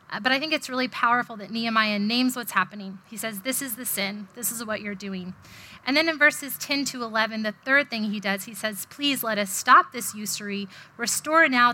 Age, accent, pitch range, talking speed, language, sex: 20-39, American, 200-250 Hz, 225 wpm, English, female